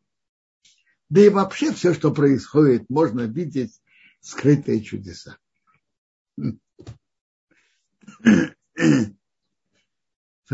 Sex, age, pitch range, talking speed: male, 60-79, 125-180 Hz, 65 wpm